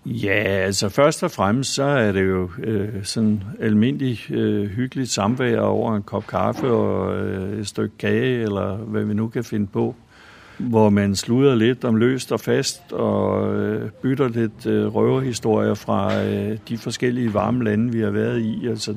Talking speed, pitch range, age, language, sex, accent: 175 wpm, 105-115 Hz, 60-79, Danish, male, native